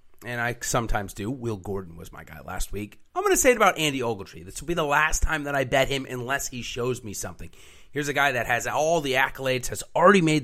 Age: 30-49